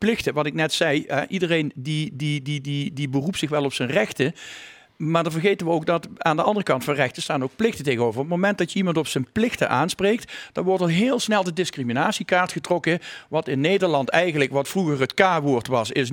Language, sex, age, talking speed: Dutch, male, 50-69, 215 wpm